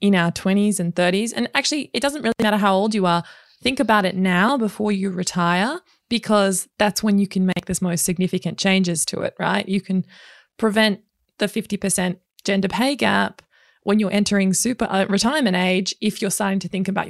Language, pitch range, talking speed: English, 185-220 Hz, 195 wpm